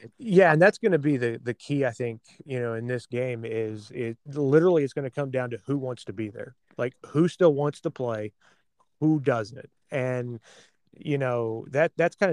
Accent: American